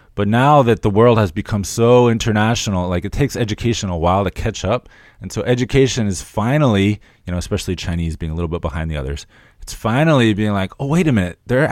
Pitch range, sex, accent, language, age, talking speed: 85-115 Hz, male, American, English, 20-39, 220 wpm